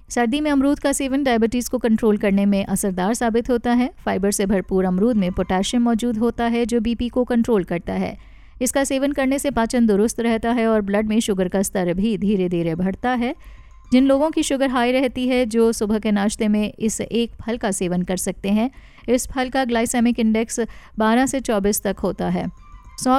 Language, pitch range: Hindi, 205-250 Hz